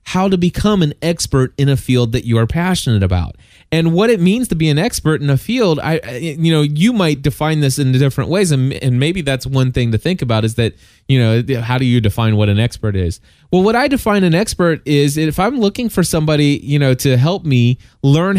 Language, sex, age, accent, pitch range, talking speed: English, male, 20-39, American, 120-170 Hz, 240 wpm